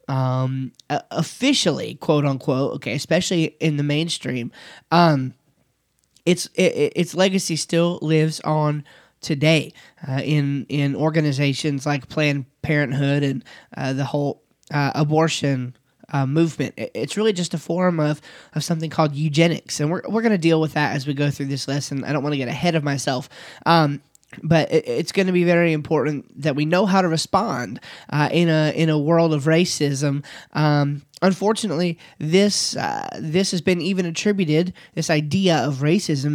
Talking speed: 165 wpm